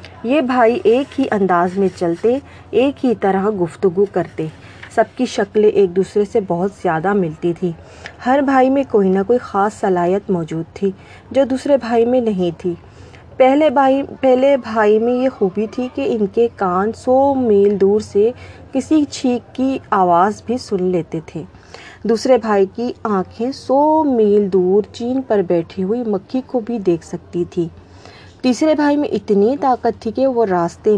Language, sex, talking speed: Urdu, female, 170 wpm